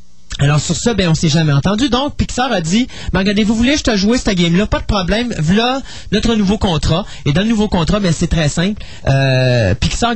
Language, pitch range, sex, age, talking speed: French, 125-175 Hz, male, 30-49, 230 wpm